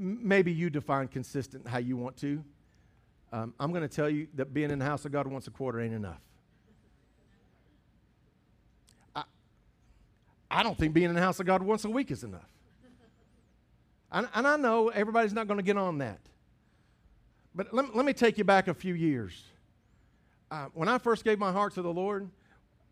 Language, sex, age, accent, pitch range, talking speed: English, male, 50-69, American, 145-190 Hz, 190 wpm